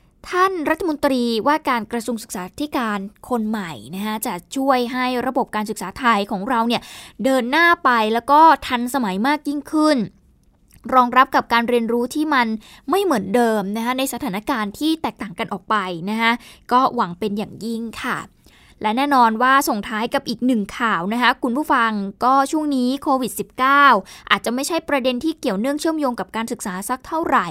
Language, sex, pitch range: Thai, female, 220-285 Hz